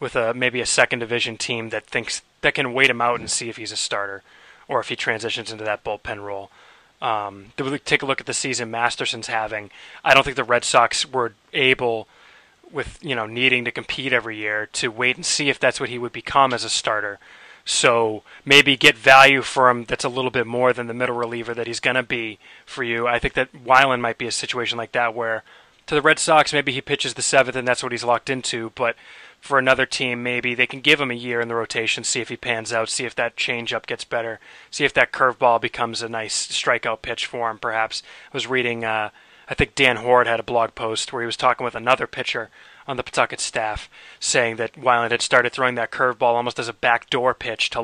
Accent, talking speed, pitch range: American, 235 wpm, 115-130 Hz